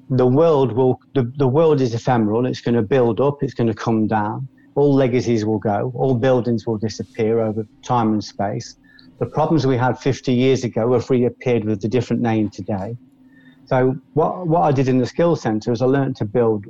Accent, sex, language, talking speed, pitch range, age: British, male, English, 205 wpm, 115-135 Hz, 40-59